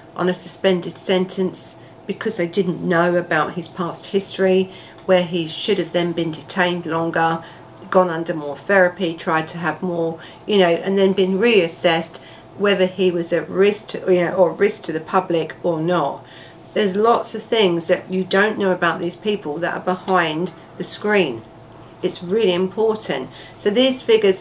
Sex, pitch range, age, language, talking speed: female, 165-190 Hz, 50-69, English, 175 wpm